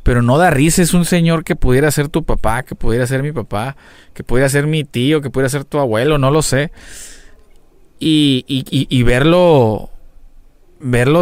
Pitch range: 125-155 Hz